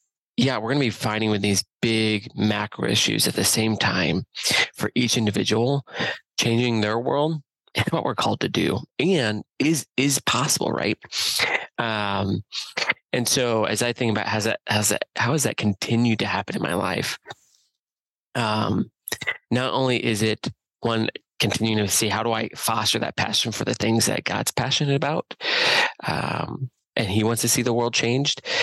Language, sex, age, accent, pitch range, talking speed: English, male, 20-39, American, 105-120 Hz, 170 wpm